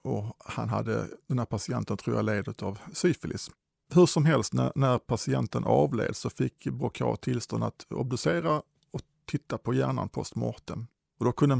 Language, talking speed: Swedish, 165 wpm